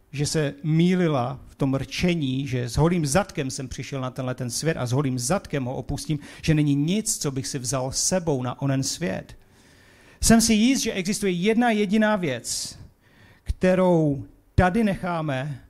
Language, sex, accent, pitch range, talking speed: Czech, male, native, 135-205 Hz, 170 wpm